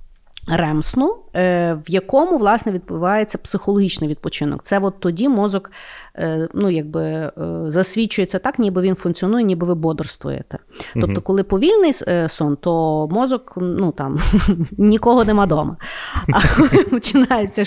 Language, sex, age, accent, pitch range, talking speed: Ukrainian, female, 30-49, native, 165-220 Hz, 120 wpm